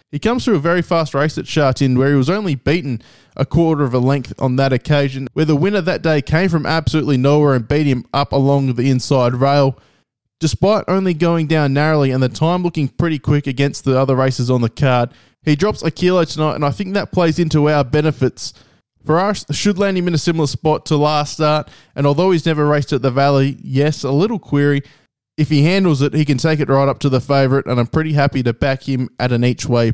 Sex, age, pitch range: male, 20-39, 130-155 Hz